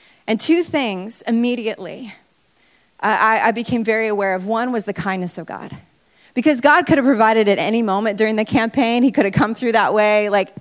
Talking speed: 200 wpm